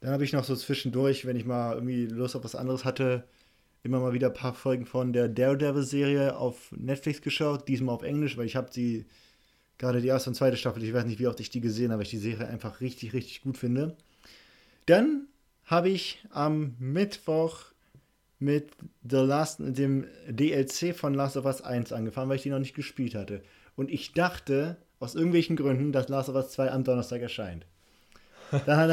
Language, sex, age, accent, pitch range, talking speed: German, male, 20-39, German, 125-145 Hz, 195 wpm